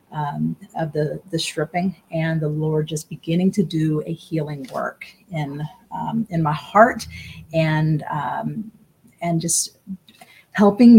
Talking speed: 130 wpm